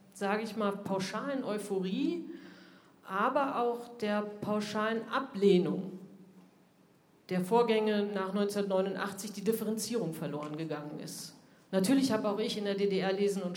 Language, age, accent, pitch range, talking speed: German, 40-59, German, 195-230 Hz, 125 wpm